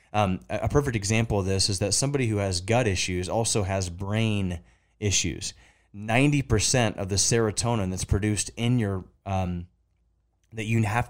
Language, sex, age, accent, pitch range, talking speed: English, male, 20-39, American, 95-110 Hz, 155 wpm